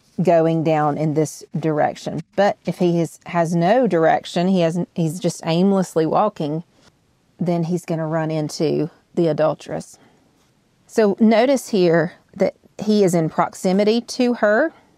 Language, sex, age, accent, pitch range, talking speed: English, female, 40-59, American, 165-195 Hz, 140 wpm